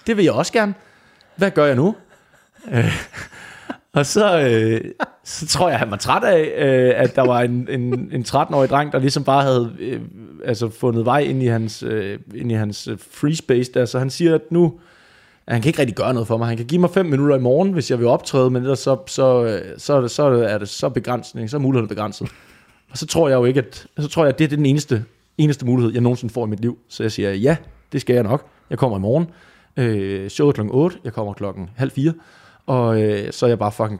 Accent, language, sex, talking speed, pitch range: native, Danish, male, 245 wpm, 115-145 Hz